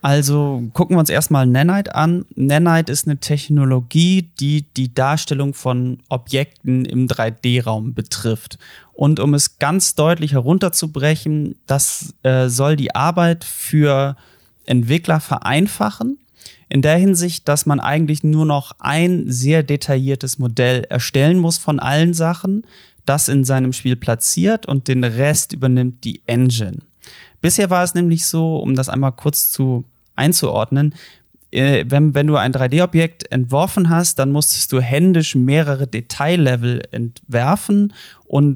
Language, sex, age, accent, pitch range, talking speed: German, male, 30-49, German, 130-160 Hz, 135 wpm